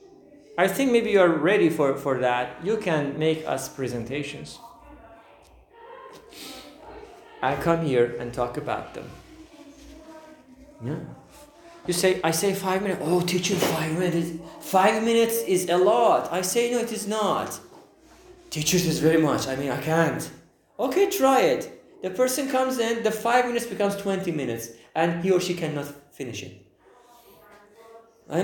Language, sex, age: English, male, 30-49